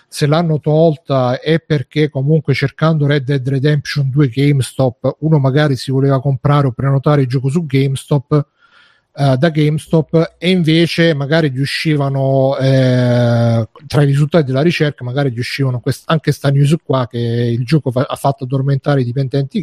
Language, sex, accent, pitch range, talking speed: Italian, male, native, 135-160 Hz, 160 wpm